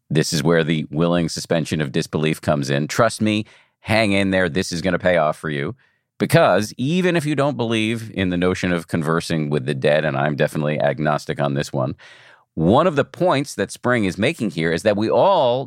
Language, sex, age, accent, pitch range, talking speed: English, male, 50-69, American, 85-120 Hz, 220 wpm